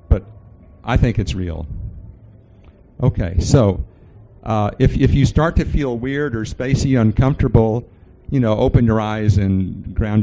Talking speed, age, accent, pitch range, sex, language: 140 wpm, 50-69, American, 95-115 Hz, male, English